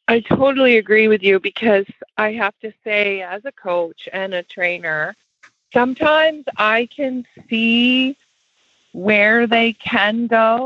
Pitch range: 200-255 Hz